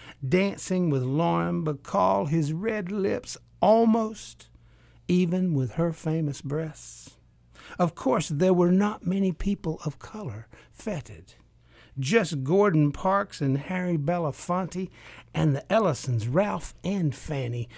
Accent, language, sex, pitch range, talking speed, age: American, English, male, 130-185 Hz, 120 wpm, 60-79